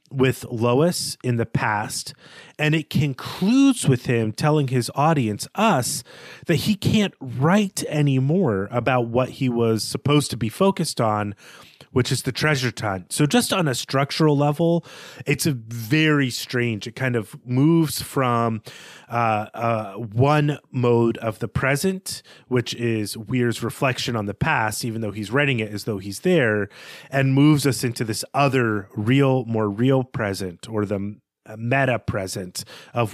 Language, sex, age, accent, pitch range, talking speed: English, male, 30-49, American, 115-155 Hz, 155 wpm